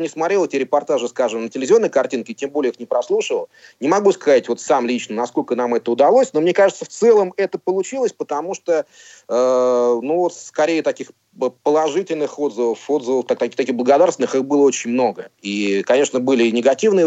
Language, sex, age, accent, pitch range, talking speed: Russian, male, 30-49, native, 115-160 Hz, 170 wpm